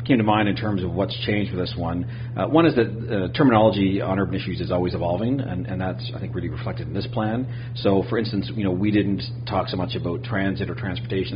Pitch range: 100-120 Hz